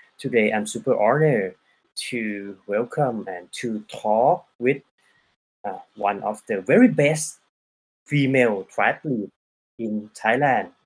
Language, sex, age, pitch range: Thai, male, 20-39, 105-145 Hz